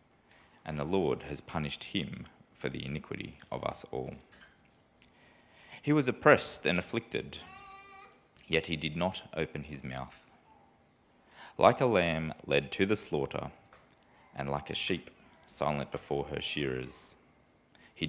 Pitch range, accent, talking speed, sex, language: 70-90 Hz, Australian, 135 wpm, male, English